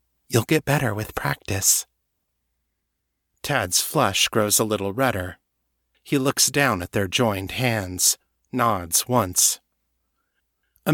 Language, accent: English, American